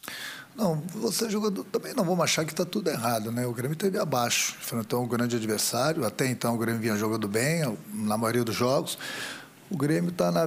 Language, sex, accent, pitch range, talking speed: Portuguese, male, Brazilian, 120-175 Hz, 210 wpm